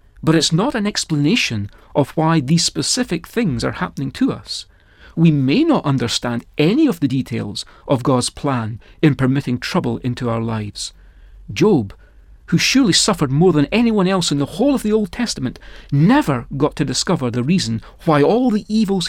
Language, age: English, 40-59